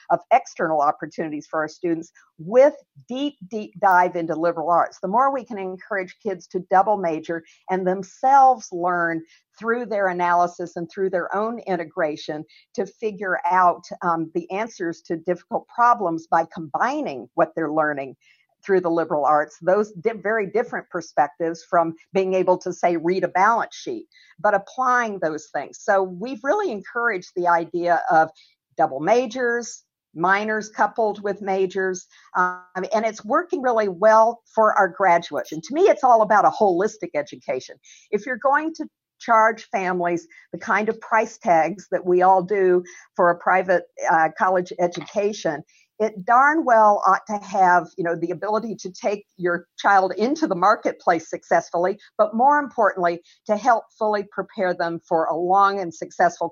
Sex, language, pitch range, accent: female, English, 170-220 Hz, American